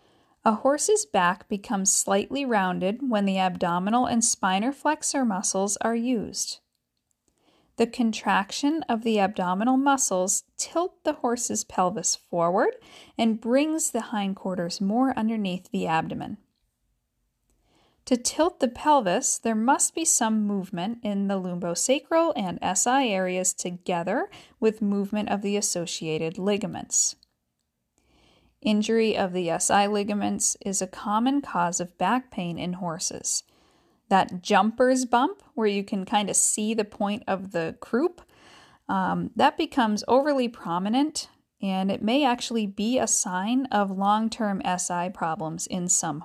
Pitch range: 185-255 Hz